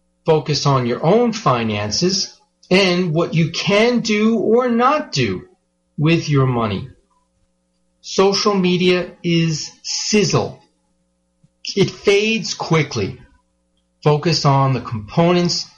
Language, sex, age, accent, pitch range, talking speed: English, male, 40-59, American, 120-180 Hz, 105 wpm